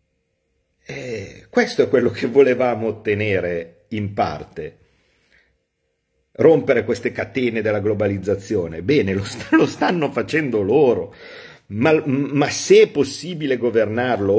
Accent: native